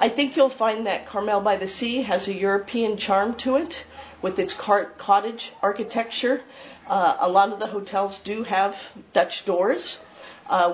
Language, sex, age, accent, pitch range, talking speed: English, female, 40-59, American, 185-245 Hz, 150 wpm